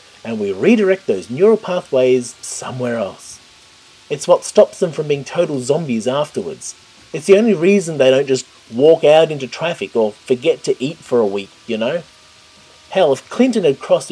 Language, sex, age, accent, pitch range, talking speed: English, male, 30-49, Australian, 120-190 Hz, 180 wpm